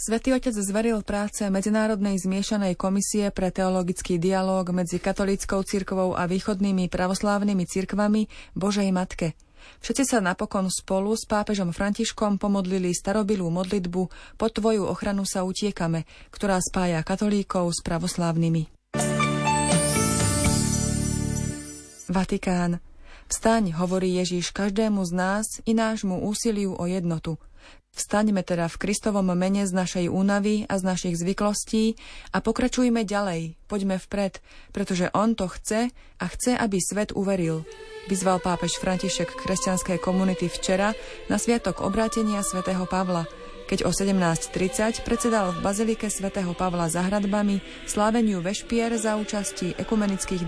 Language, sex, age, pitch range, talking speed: Slovak, female, 30-49, 180-210 Hz, 120 wpm